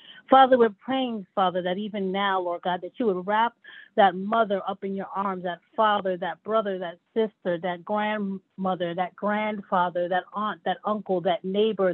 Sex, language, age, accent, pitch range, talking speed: female, English, 30-49, American, 185-225 Hz, 175 wpm